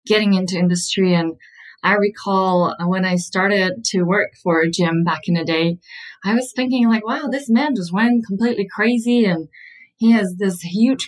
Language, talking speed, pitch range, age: English, 180 wpm, 170-200 Hz, 20-39